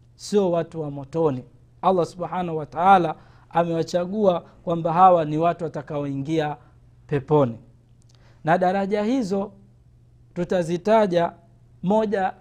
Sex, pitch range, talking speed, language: male, 145-195 Hz, 100 wpm, Swahili